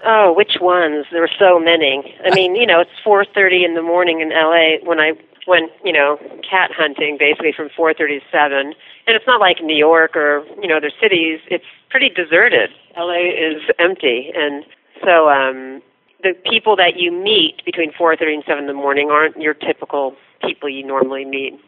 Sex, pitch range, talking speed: female, 150-180 Hz, 185 wpm